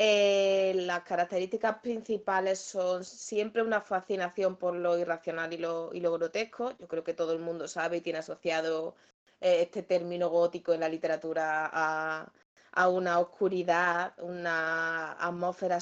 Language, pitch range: Spanish, 170-205 Hz